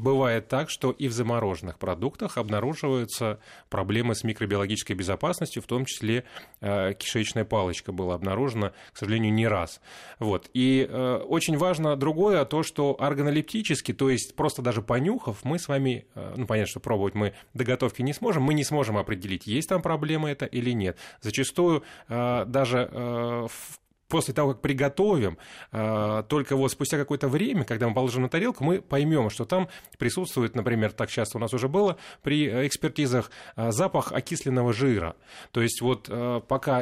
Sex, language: male, Russian